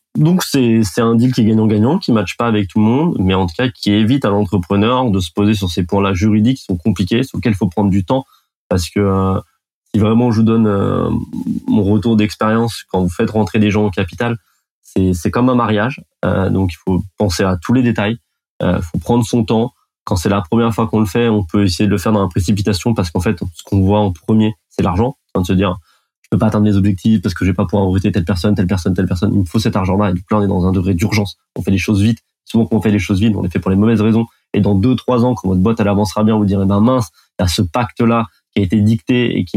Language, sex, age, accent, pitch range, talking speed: French, male, 20-39, French, 100-115 Hz, 285 wpm